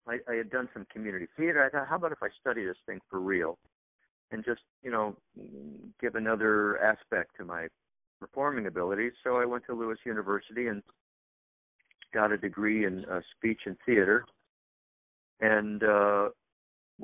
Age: 50-69